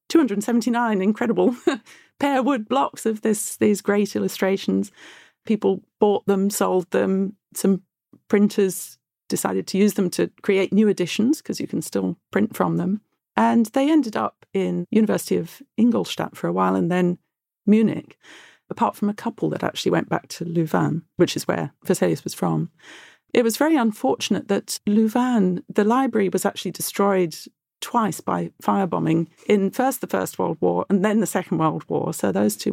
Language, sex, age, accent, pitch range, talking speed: English, female, 40-59, British, 175-230 Hz, 165 wpm